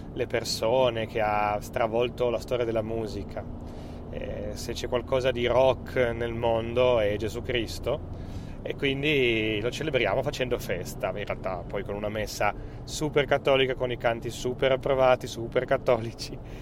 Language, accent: Italian, native